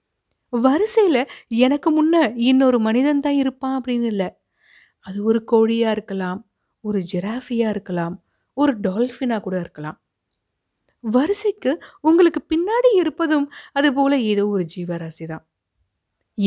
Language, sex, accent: Tamil, female, native